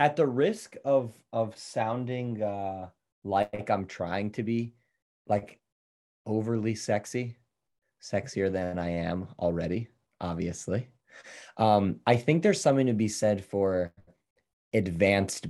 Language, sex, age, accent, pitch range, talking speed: English, male, 30-49, American, 95-125 Hz, 120 wpm